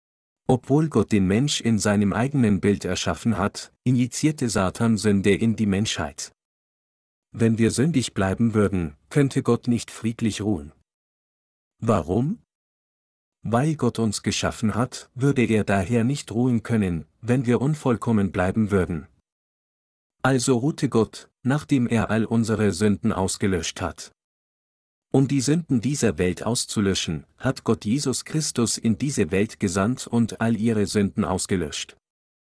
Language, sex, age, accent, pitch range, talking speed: German, male, 50-69, German, 100-120 Hz, 135 wpm